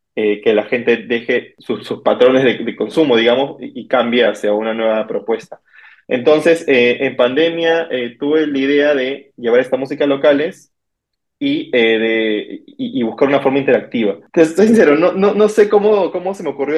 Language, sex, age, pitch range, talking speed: Spanish, male, 20-39, 120-150 Hz, 195 wpm